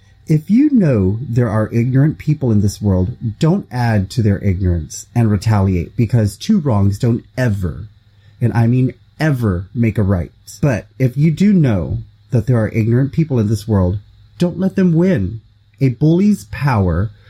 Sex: male